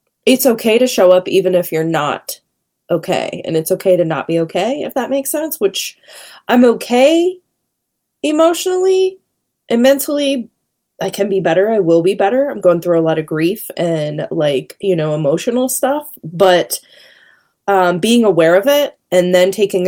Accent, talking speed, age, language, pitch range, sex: American, 170 wpm, 20-39, English, 180-250 Hz, female